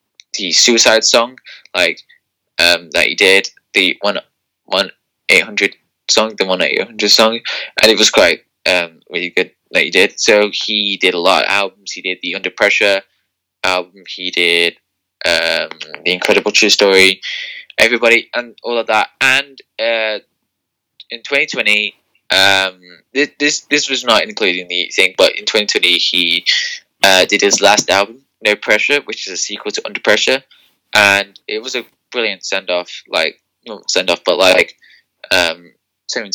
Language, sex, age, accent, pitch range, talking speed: English, male, 10-29, British, 95-115 Hz, 160 wpm